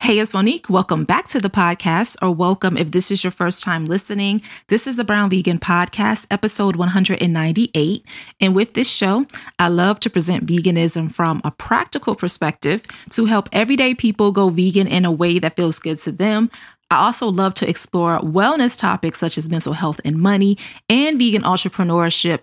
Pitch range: 170-215 Hz